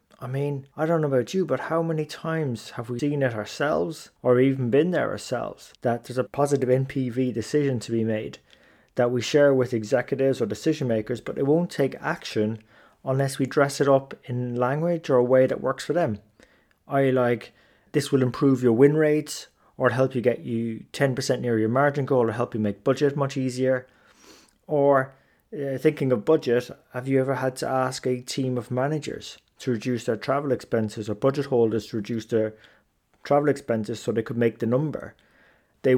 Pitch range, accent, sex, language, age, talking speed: 120-140 Hz, British, male, English, 30-49, 195 wpm